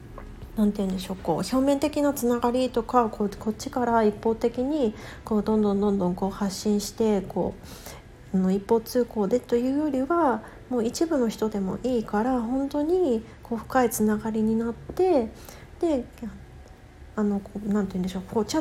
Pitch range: 205-255 Hz